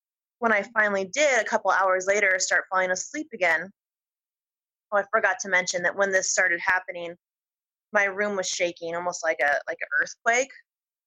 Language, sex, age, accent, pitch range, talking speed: English, female, 20-39, American, 180-225 Hz, 175 wpm